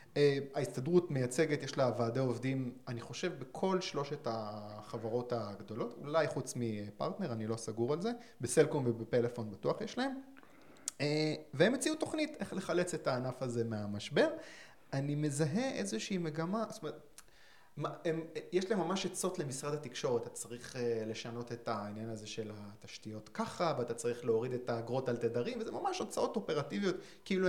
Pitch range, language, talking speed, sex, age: 120-180 Hz, Hebrew, 150 wpm, male, 30-49